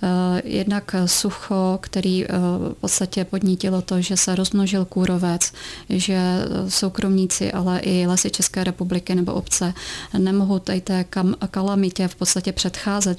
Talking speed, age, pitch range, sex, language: 125 wpm, 30-49, 180-190 Hz, female, Czech